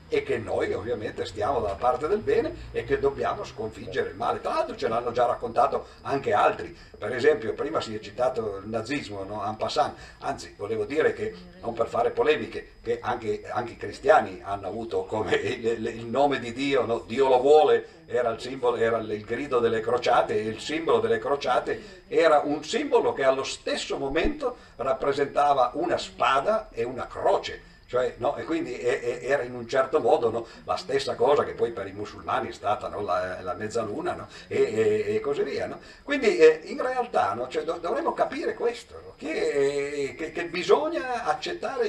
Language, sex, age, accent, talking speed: Italian, male, 50-69, native, 190 wpm